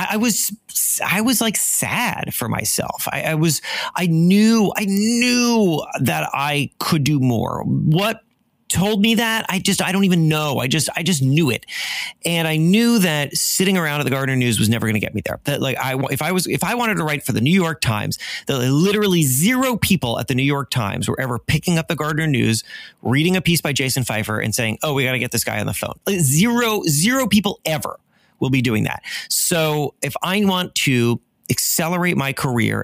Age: 30-49